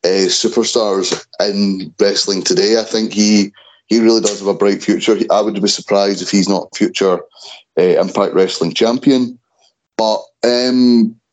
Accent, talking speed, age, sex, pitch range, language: British, 155 wpm, 30-49, male, 100-120 Hz, English